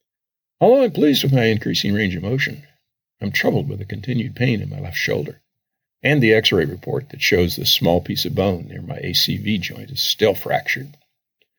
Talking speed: 190 wpm